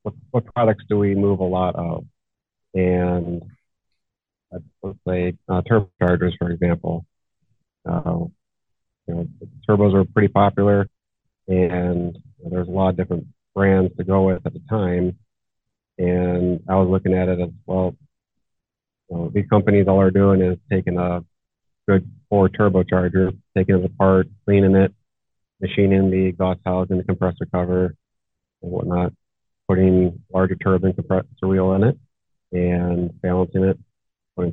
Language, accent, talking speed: English, American, 145 wpm